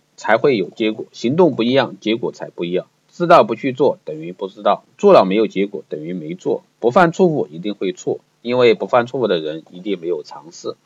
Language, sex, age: Chinese, male, 50-69